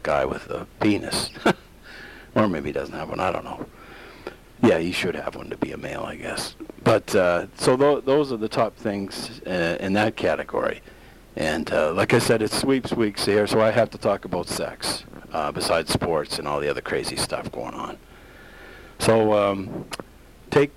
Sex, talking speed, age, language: male, 195 wpm, 60-79, English